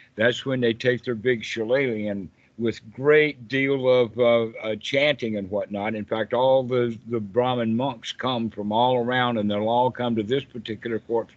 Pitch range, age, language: 115-135 Hz, 60-79, English